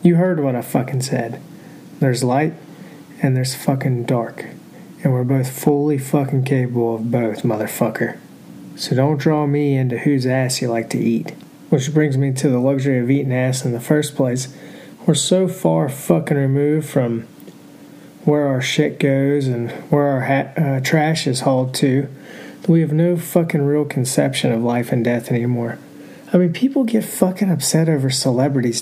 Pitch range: 135-175 Hz